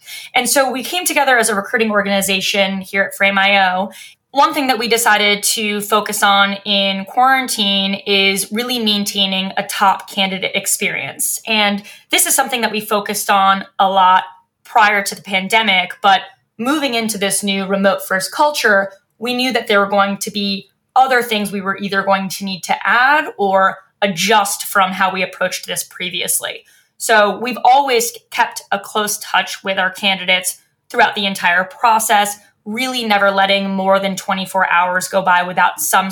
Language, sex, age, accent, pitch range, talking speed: English, female, 20-39, American, 190-225 Hz, 170 wpm